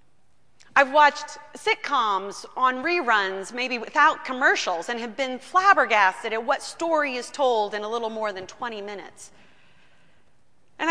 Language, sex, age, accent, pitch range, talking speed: English, female, 30-49, American, 210-265 Hz, 140 wpm